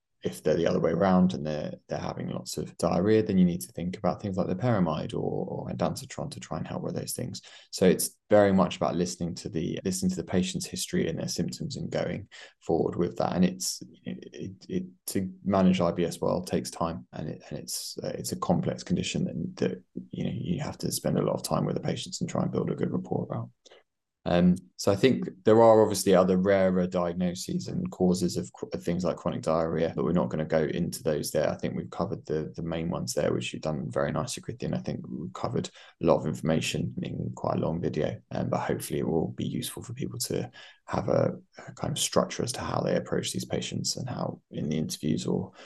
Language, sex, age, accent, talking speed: English, male, 20-39, British, 240 wpm